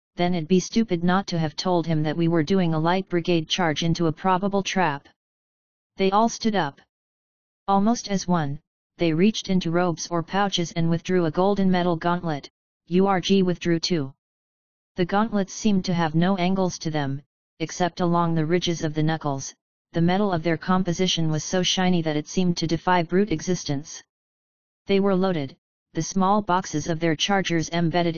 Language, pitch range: English, 160-195 Hz